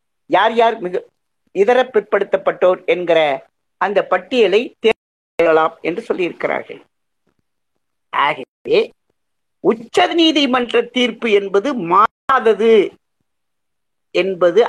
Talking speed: 70 wpm